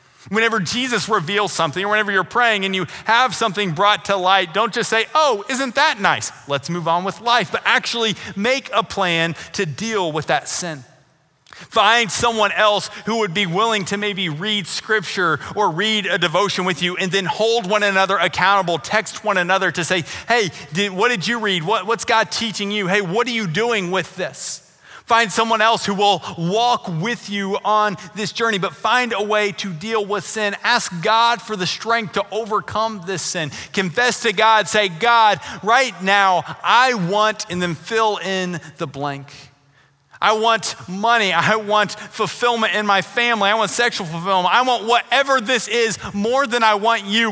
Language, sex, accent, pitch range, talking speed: English, male, American, 185-225 Hz, 185 wpm